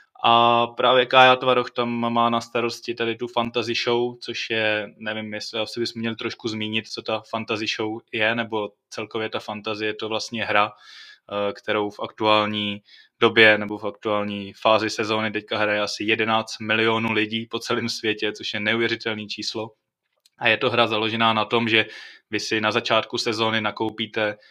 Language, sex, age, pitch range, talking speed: Slovak, male, 20-39, 105-115 Hz, 170 wpm